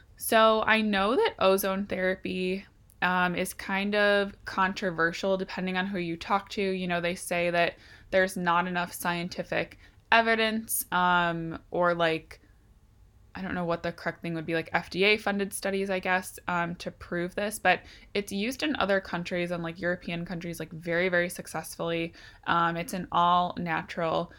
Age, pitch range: 20-39, 170-195 Hz